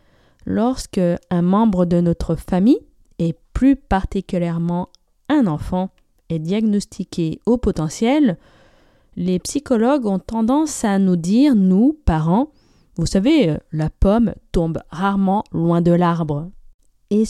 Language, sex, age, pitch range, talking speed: French, female, 20-39, 180-245 Hz, 120 wpm